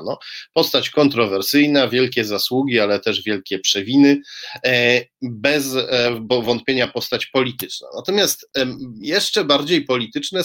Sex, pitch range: male, 115-145 Hz